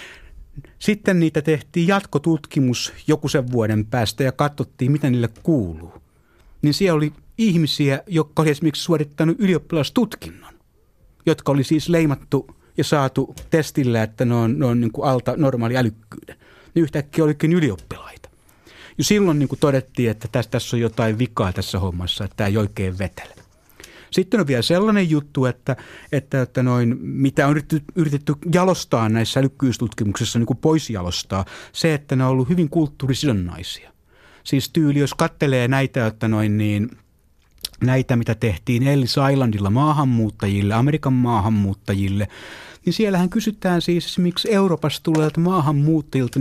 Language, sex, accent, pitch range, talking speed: Finnish, male, native, 115-155 Hz, 140 wpm